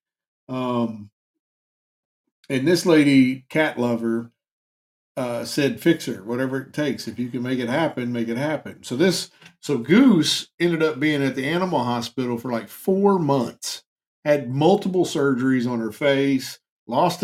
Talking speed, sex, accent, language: 155 wpm, male, American, English